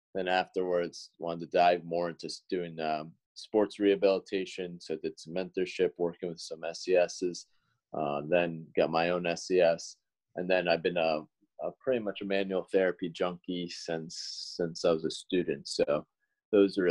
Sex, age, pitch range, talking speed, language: male, 30-49, 85-100 Hz, 165 wpm, English